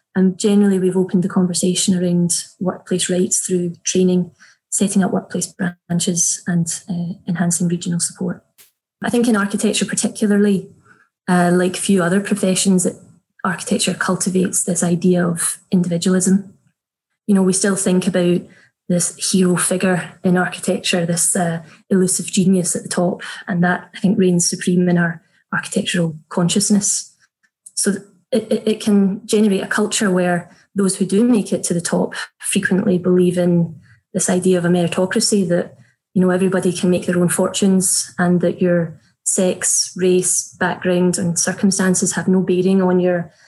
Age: 20-39